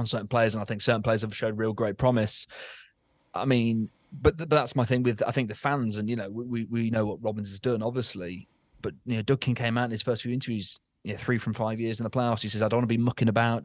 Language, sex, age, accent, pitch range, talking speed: English, male, 20-39, British, 110-130 Hz, 290 wpm